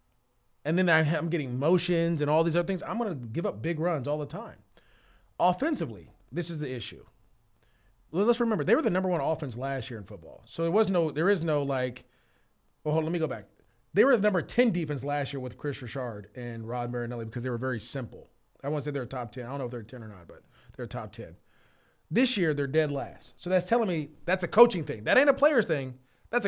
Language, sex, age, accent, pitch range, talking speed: English, male, 30-49, American, 135-220 Hz, 250 wpm